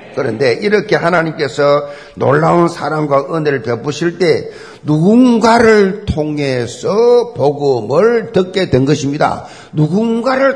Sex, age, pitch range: male, 50-69, 155-225 Hz